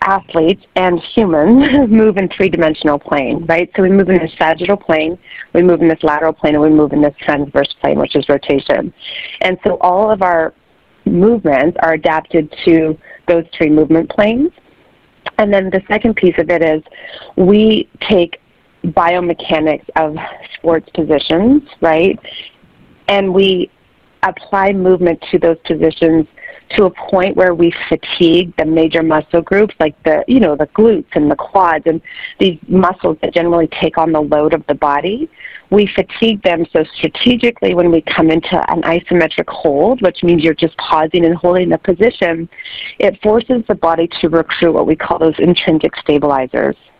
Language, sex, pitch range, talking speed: English, female, 160-195 Hz, 165 wpm